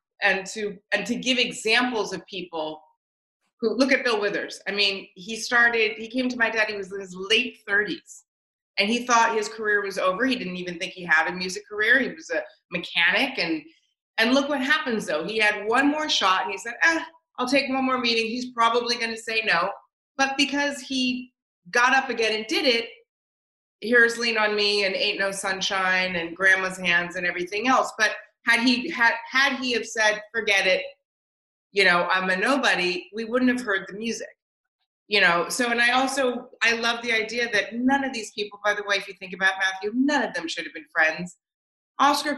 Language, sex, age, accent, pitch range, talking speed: English, female, 30-49, American, 195-250 Hz, 210 wpm